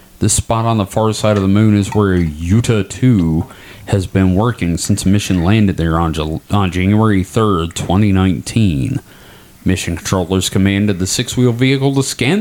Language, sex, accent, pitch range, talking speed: English, male, American, 95-130 Hz, 165 wpm